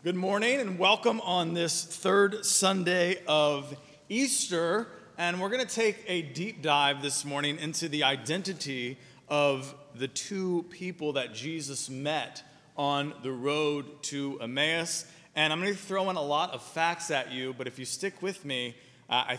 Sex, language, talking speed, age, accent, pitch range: male, English, 165 wpm, 30-49, American, 130-170 Hz